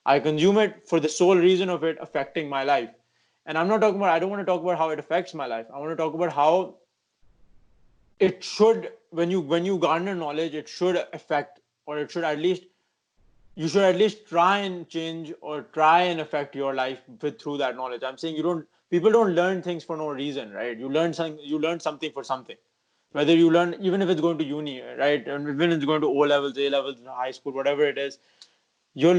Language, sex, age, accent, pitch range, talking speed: English, male, 20-39, Indian, 135-170 Hz, 230 wpm